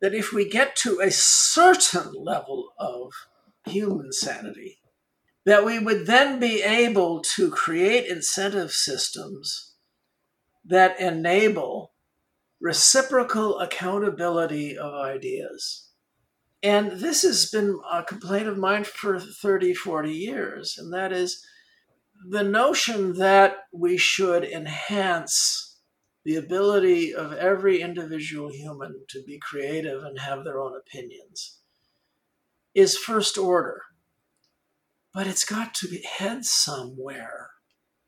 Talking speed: 115 wpm